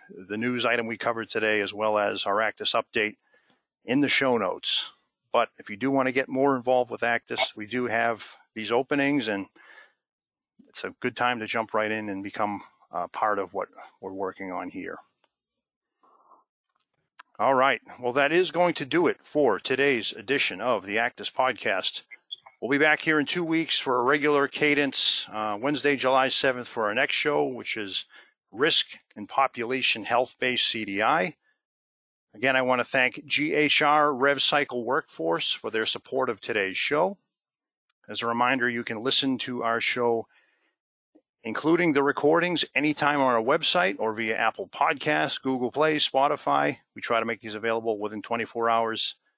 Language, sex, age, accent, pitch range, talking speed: English, male, 50-69, American, 115-140 Hz, 170 wpm